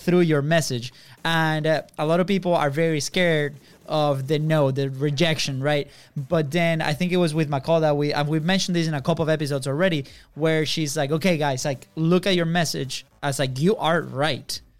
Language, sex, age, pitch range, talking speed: English, male, 20-39, 140-160 Hz, 220 wpm